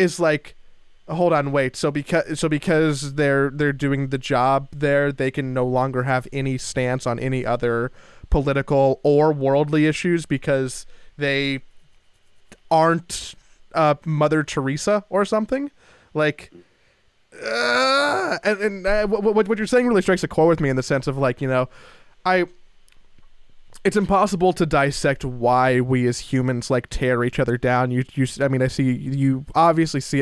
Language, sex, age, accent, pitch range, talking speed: English, male, 20-39, American, 130-160 Hz, 165 wpm